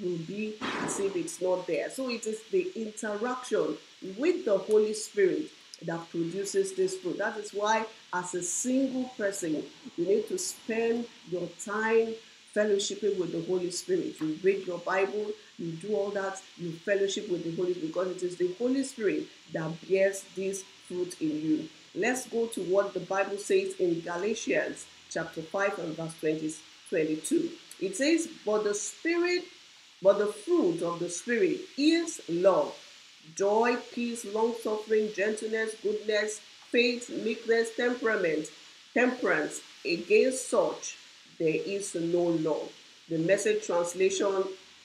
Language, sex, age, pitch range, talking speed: English, female, 40-59, 180-275 Hz, 145 wpm